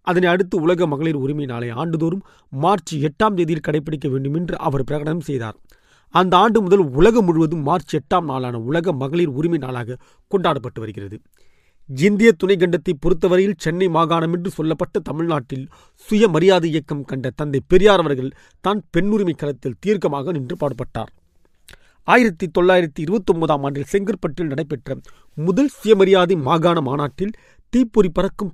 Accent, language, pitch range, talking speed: native, Tamil, 145-195 Hz, 125 wpm